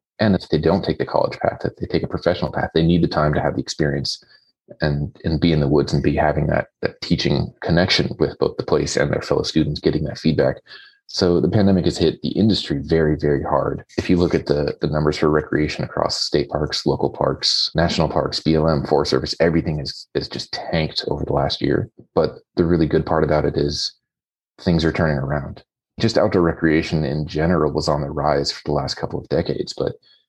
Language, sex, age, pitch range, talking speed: English, male, 30-49, 75-80 Hz, 220 wpm